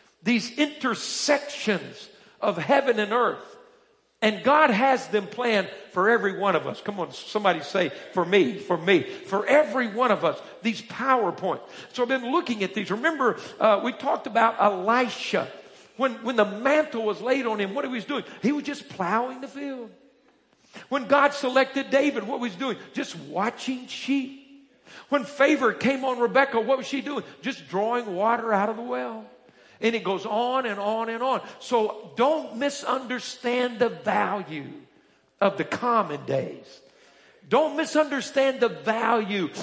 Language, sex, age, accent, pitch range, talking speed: English, male, 50-69, American, 205-270 Hz, 165 wpm